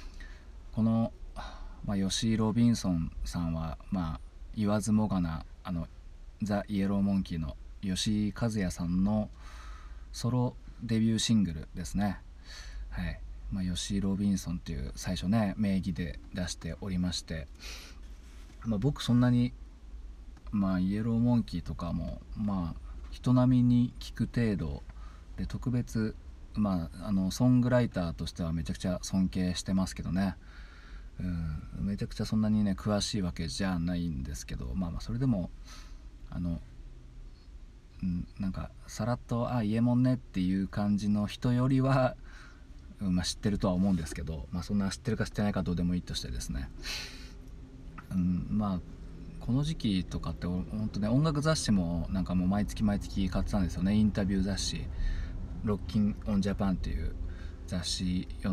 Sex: male